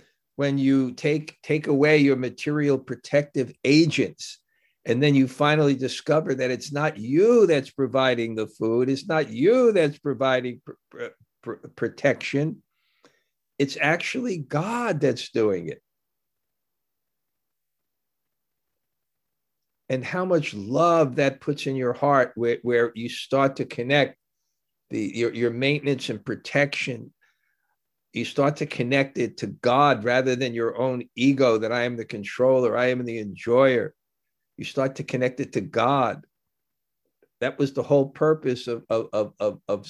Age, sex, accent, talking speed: 50-69, male, American, 145 wpm